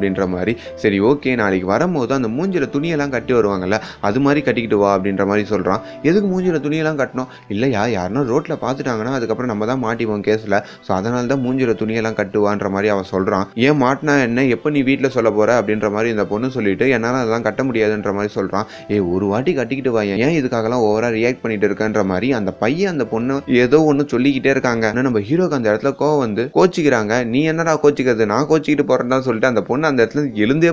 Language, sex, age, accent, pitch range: Tamil, male, 20-39, native, 105-135 Hz